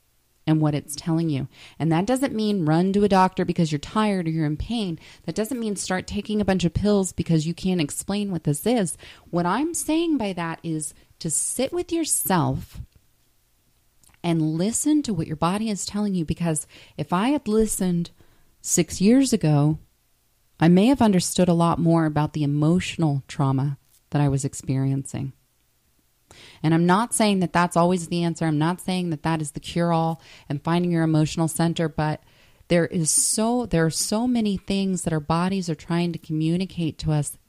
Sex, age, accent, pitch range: female, 30-49, American, 150-190 Hz